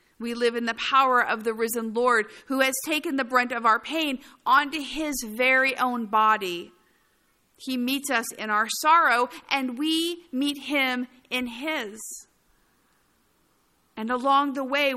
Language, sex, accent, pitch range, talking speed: English, female, American, 220-265 Hz, 150 wpm